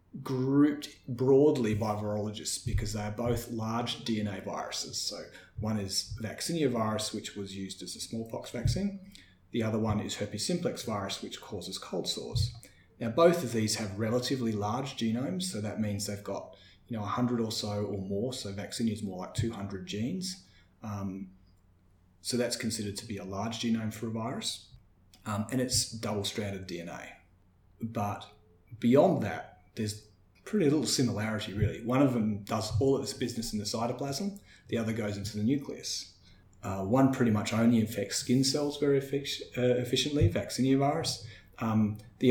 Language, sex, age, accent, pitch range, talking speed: English, male, 30-49, Australian, 100-120 Hz, 170 wpm